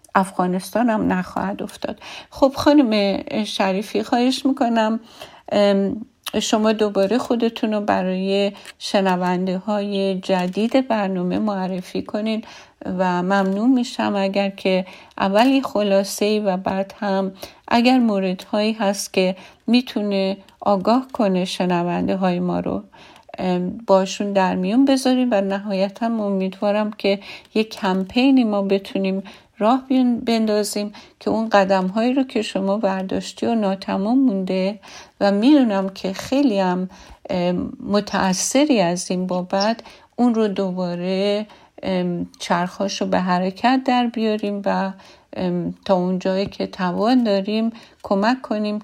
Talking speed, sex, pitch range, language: 115 wpm, female, 190-225 Hz, Persian